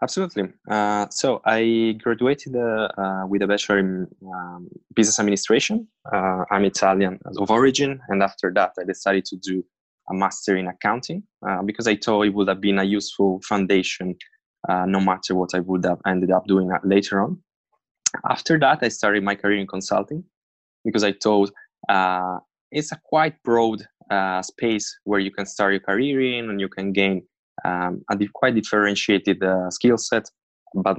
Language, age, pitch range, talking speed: English, 20-39, 95-110 Hz, 175 wpm